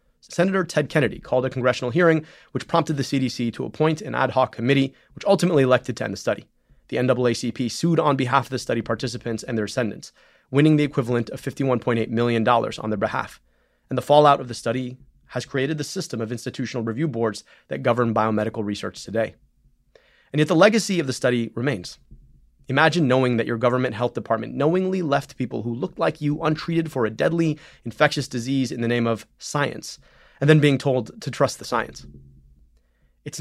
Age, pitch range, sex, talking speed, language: 30-49, 115-145 Hz, male, 190 wpm, English